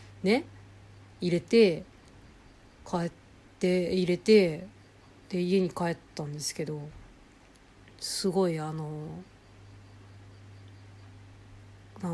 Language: Japanese